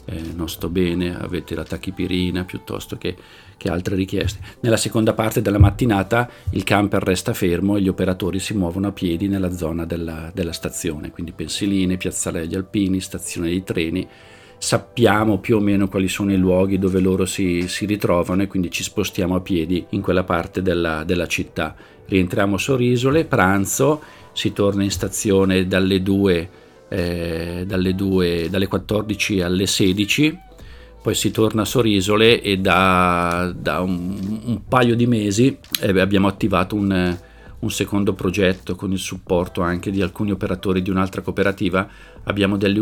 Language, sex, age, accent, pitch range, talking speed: Italian, male, 50-69, native, 90-100 Hz, 160 wpm